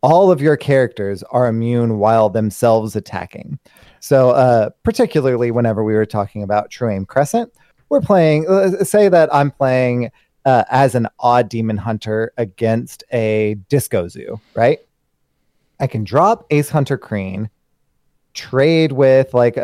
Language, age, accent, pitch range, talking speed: English, 30-49, American, 110-140 Hz, 140 wpm